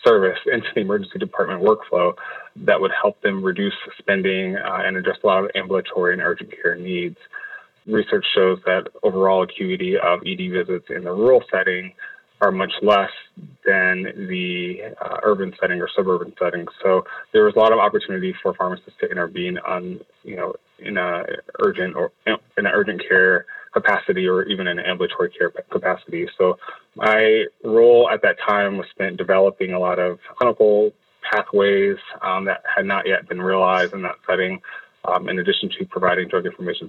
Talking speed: 170 wpm